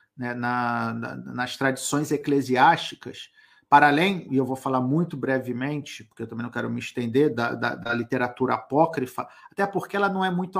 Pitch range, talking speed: 125-185 Hz, 165 wpm